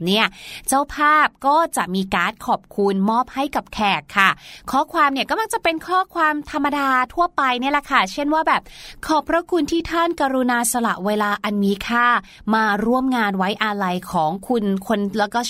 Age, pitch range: 20-39, 210-285 Hz